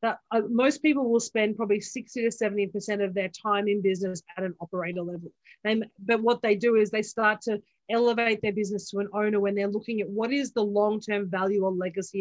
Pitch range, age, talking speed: 200-240 Hz, 30-49, 210 wpm